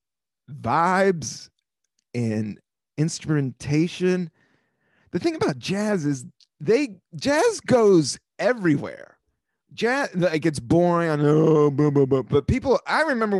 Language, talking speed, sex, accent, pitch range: English, 90 wpm, male, American, 130-185 Hz